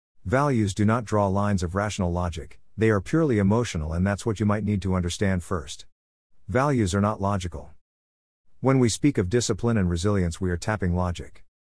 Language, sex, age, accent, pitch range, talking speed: English, male, 50-69, American, 90-115 Hz, 185 wpm